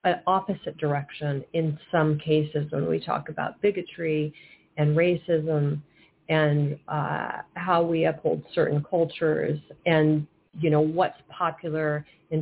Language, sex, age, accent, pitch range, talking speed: English, female, 40-59, American, 150-165 Hz, 125 wpm